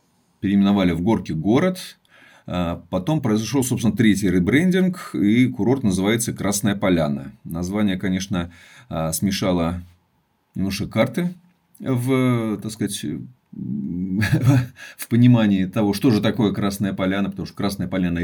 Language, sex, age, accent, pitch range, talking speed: Russian, male, 30-49, native, 95-130 Hz, 105 wpm